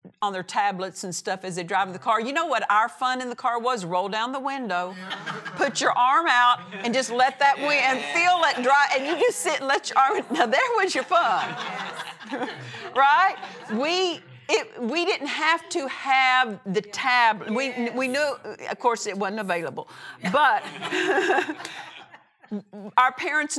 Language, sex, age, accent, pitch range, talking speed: English, female, 50-69, American, 215-280 Hz, 180 wpm